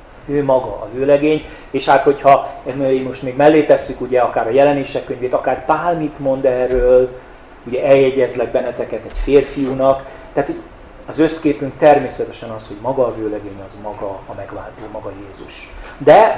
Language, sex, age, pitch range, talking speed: Hungarian, male, 40-59, 115-150 Hz, 150 wpm